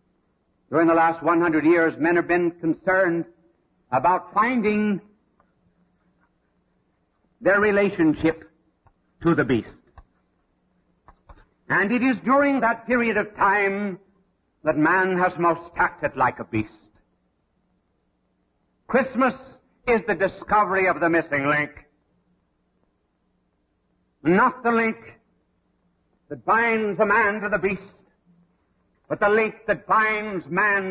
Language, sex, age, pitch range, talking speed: English, male, 60-79, 165-205 Hz, 110 wpm